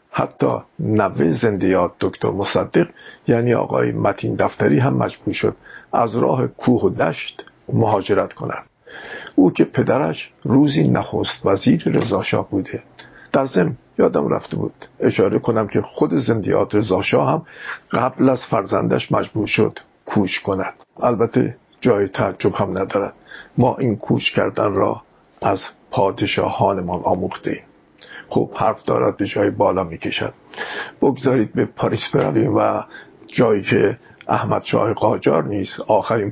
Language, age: English, 50-69